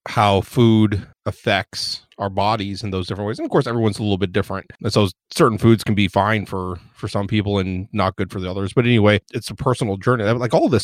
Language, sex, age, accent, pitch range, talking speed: English, male, 30-49, American, 100-115 Hz, 240 wpm